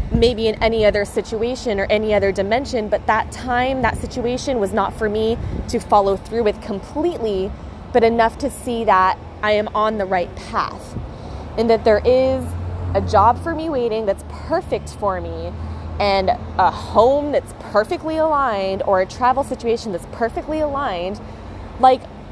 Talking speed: 165 wpm